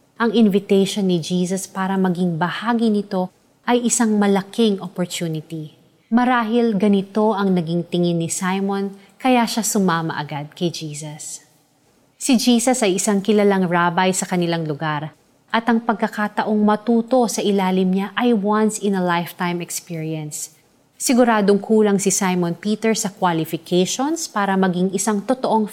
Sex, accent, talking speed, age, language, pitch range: female, native, 135 wpm, 30-49, Filipino, 170-220 Hz